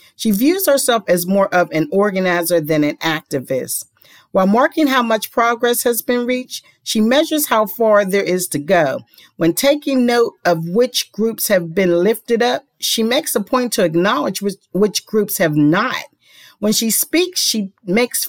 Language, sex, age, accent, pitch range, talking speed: English, female, 40-59, American, 165-230 Hz, 175 wpm